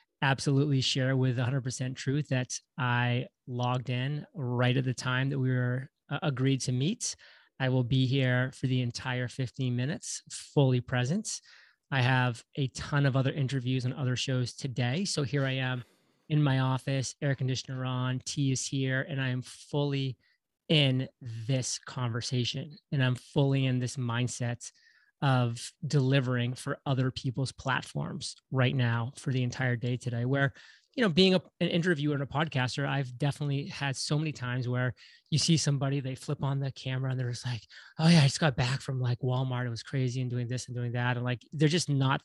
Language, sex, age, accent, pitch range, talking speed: English, male, 30-49, American, 125-140 Hz, 185 wpm